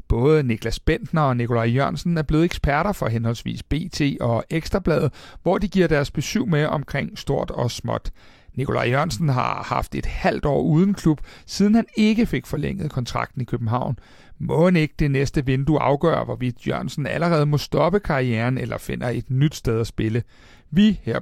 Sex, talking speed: male, 175 wpm